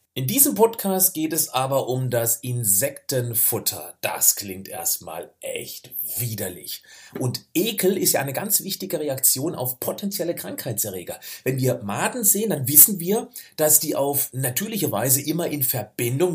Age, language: 40-59, German